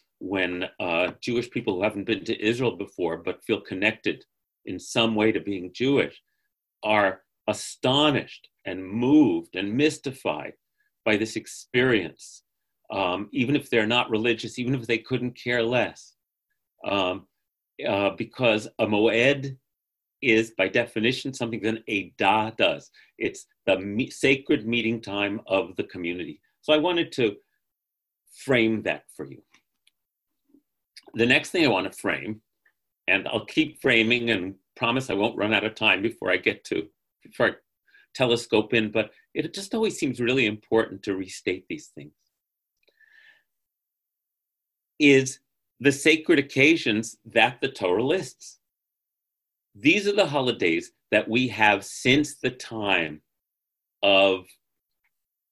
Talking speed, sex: 135 wpm, male